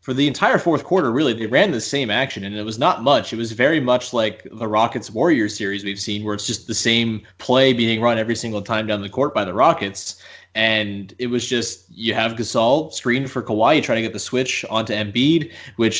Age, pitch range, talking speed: 20-39, 110-135 Hz, 235 wpm